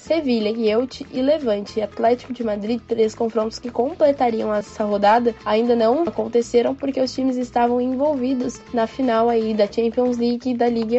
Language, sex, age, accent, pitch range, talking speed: Portuguese, female, 10-29, Brazilian, 230-275 Hz, 165 wpm